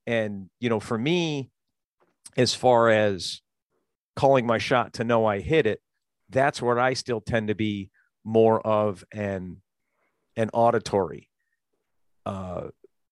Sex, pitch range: male, 105-120 Hz